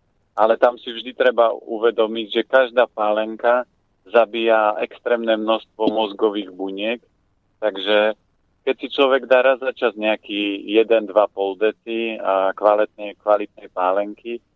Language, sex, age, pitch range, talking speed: Slovak, male, 40-59, 100-115 Hz, 115 wpm